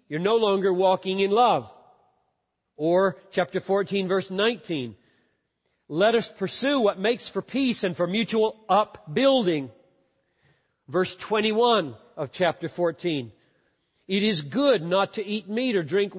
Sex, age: male, 50-69